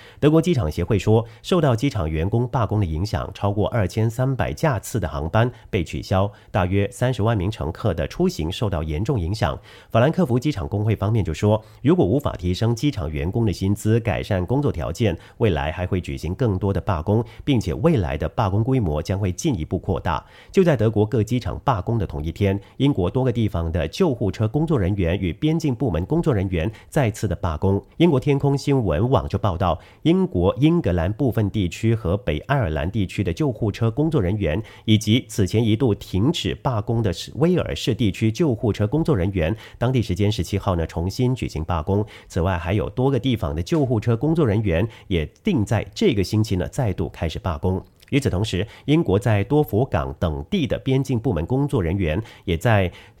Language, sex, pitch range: English, male, 95-125 Hz